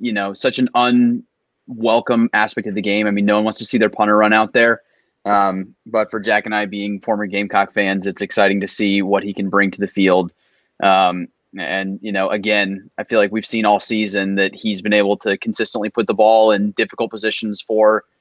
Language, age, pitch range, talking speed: English, 20-39, 105-125 Hz, 220 wpm